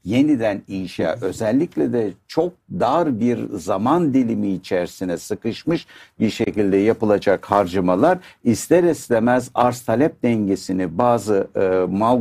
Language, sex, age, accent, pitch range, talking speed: Turkish, male, 60-79, native, 95-125 Hz, 115 wpm